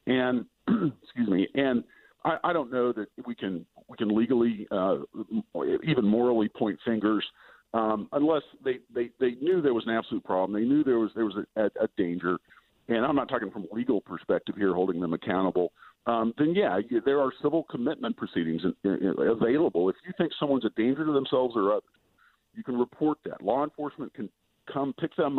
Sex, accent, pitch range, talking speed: male, American, 105-145 Hz, 190 wpm